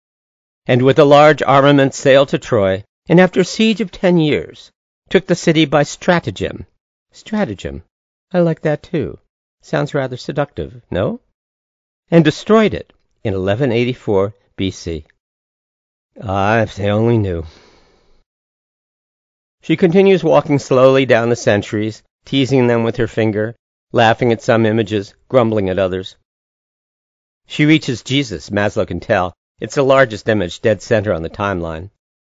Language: English